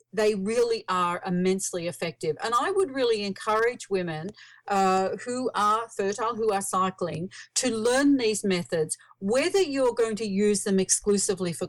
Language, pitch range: English, 180-225 Hz